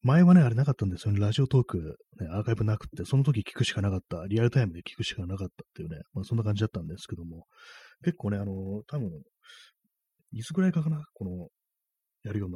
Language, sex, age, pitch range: Japanese, male, 30-49, 90-125 Hz